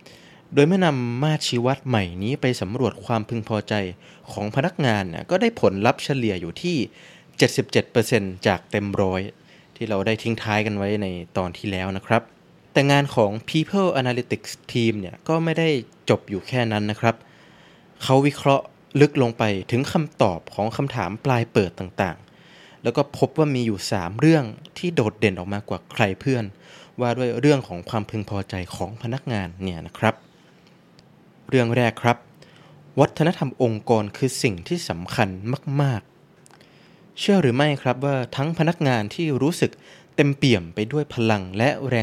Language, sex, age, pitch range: Thai, male, 20-39, 105-150 Hz